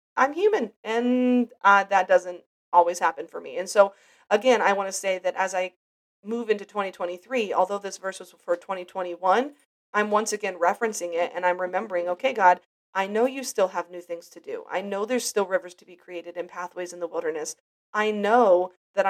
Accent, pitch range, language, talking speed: American, 180-230 Hz, English, 200 wpm